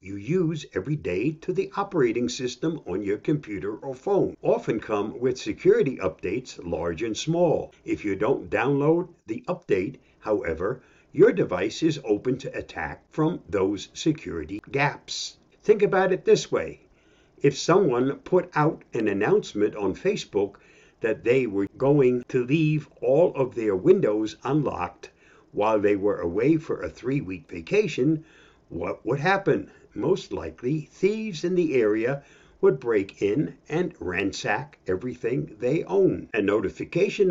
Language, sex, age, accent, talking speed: English, male, 60-79, American, 145 wpm